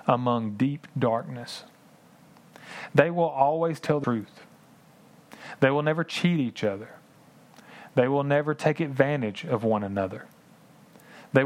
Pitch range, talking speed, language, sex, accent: 120-155 Hz, 125 wpm, English, male, American